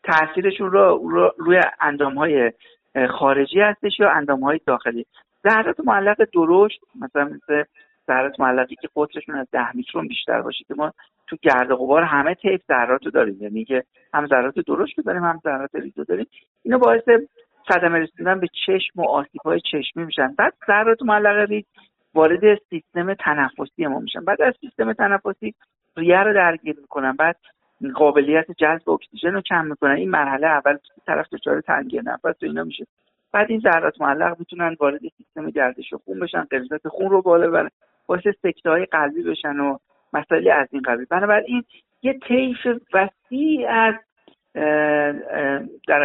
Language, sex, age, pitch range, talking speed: Persian, male, 50-69, 145-210 Hz, 155 wpm